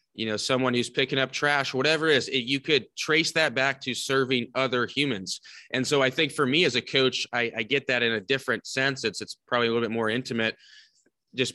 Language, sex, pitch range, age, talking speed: English, male, 115-135 Hz, 20-39, 240 wpm